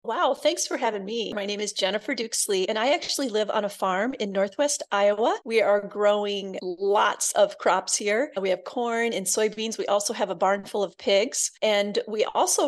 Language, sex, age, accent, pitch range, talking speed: English, female, 30-49, American, 200-240 Hz, 205 wpm